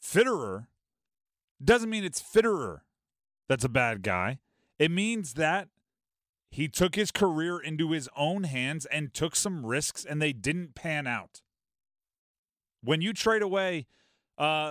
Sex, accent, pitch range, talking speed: male, American, 150-200 Hz, 140 wpm